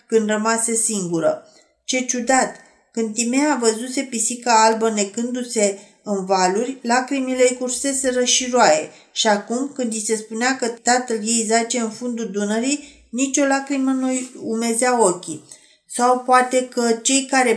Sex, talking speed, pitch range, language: female, 145 wpm, 210-245 Hz, Romanian